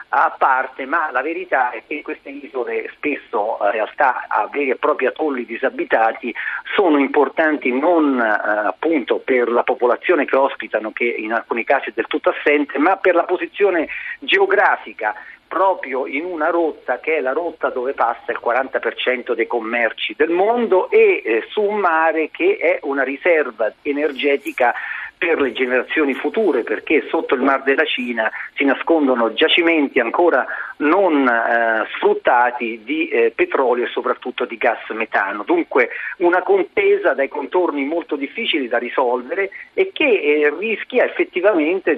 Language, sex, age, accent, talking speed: Italian, male, 50-69, native, 150 wpm